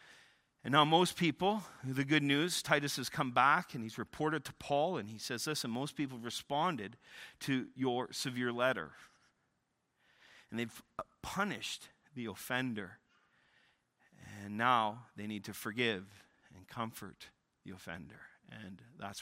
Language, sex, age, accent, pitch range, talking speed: English, male, 40-59, American, 110-145 Hz, 140 wpm